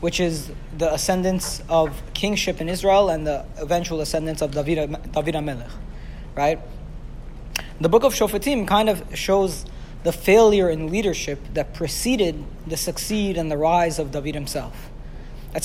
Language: English